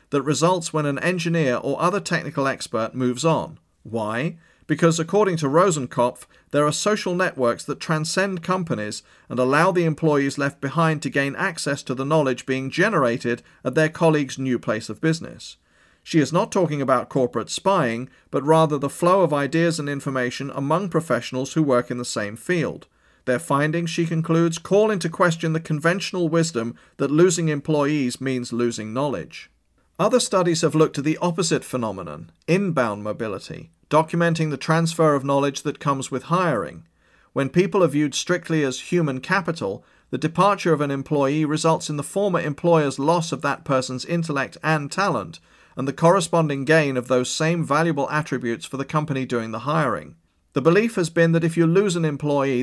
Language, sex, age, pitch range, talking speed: English, male, 40-59, 130-170 Hz, 175 wpm